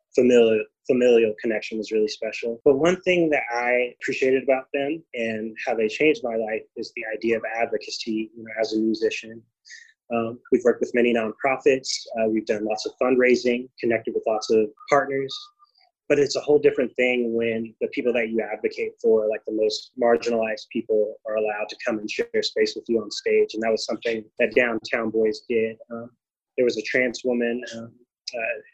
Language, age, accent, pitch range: English, 20-39, American, 110-130 Hz